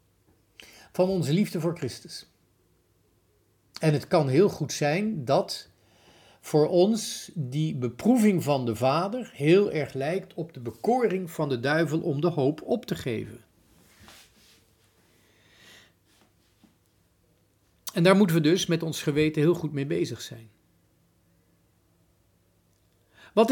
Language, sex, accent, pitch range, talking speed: Dutch, male, Dutch, 105-175 Hz, 120 wpm